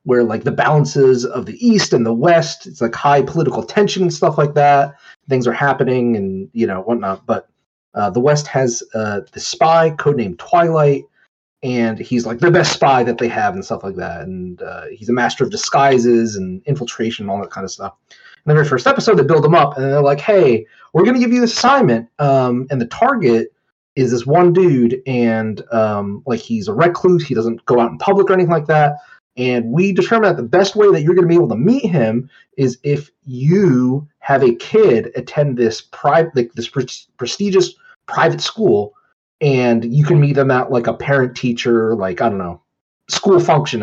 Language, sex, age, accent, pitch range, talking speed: English, male, 30-49, American, 120-175 Hz, 210 wpm